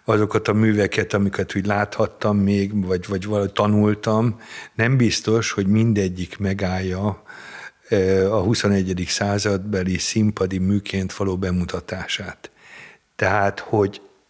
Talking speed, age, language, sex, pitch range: 100 wpm, 60-79, Hungarian, male, 100-115 Hz